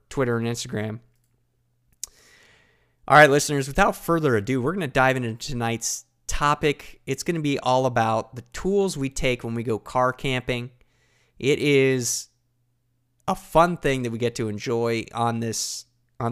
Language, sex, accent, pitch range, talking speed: English, male, American, 115-145 Hz, 160 wpm